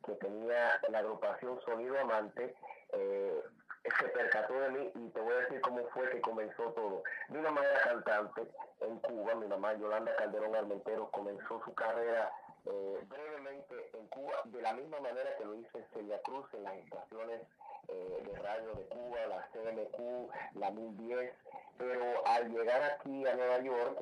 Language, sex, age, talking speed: English, male, 30-49, 165 wpm